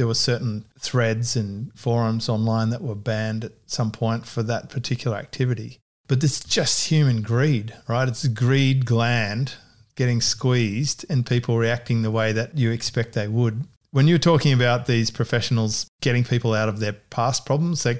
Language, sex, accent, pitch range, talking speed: English, male, Australian, 110-130 Hz, 175 wpm